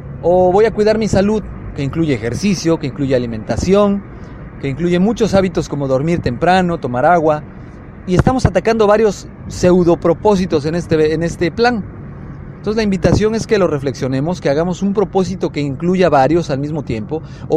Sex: male